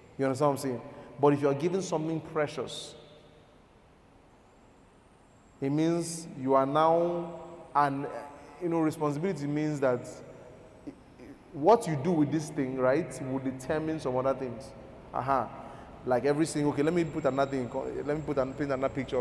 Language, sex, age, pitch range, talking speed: English, male, 20-39, 125-150 Hz, 160 wpm